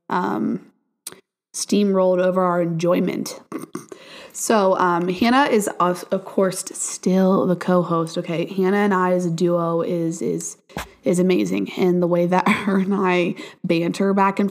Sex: female